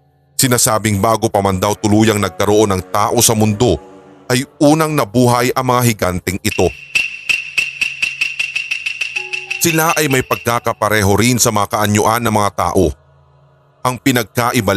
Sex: male